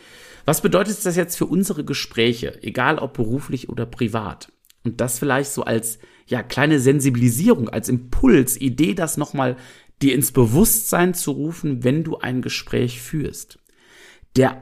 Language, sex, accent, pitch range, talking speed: German, male, German, 125-170 Hz, 150 wpm